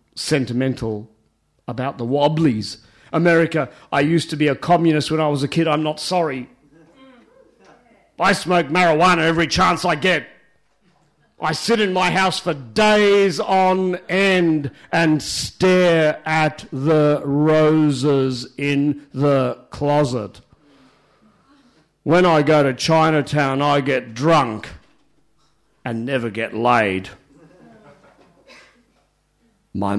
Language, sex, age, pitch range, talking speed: English, male, 50-69, 105-160 Hz, 110 wpm